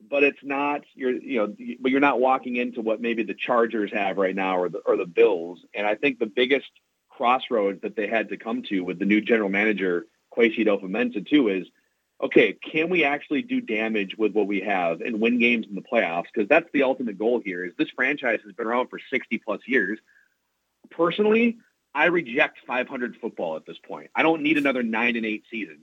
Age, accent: 40-59, American